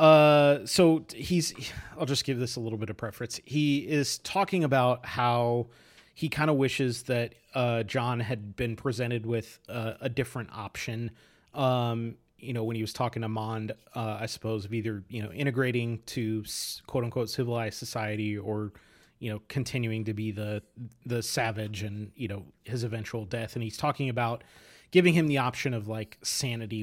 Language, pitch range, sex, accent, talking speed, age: English, 115-145 Hz, male, American, 180 wpm, 30-49